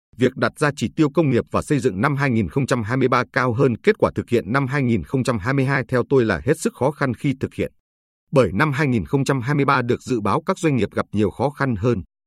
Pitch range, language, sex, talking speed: 105-140 Hz, Vietnamese, male, 215 wpm